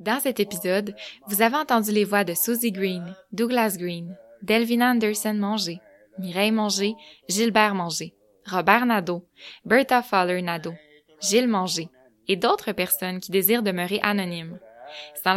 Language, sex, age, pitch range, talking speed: French, female, 10-29, 175-215 Hz, 135 wpm